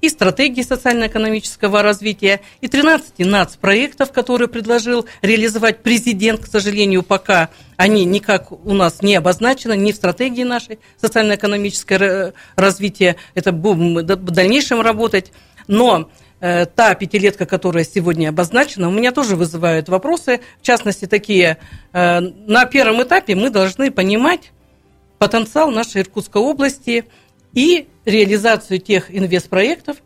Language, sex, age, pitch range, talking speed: Russian, female, 50-69, 185-235 Hz, 120 wpm